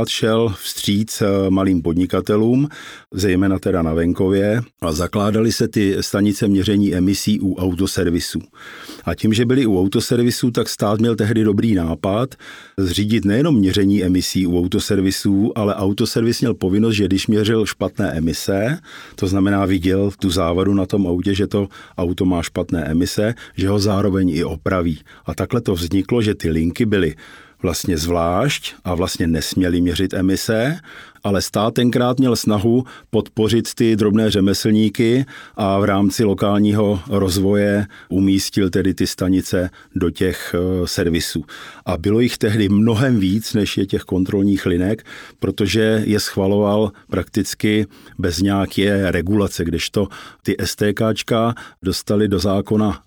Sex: male